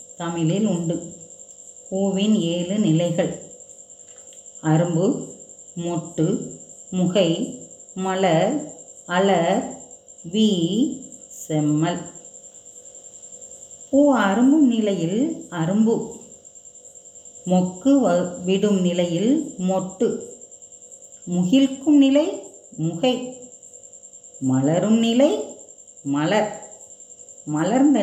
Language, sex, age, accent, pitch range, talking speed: Tamil, female, 30-49, native, 165-245 Hz, 60 wpm